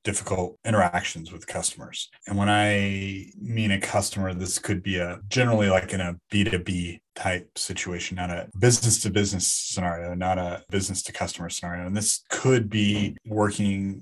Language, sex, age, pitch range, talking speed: English, male, 30-49, 95-105 Hz, 145 wpm